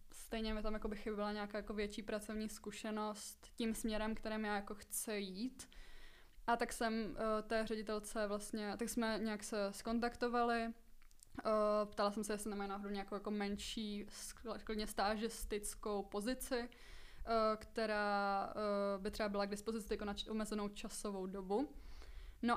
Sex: female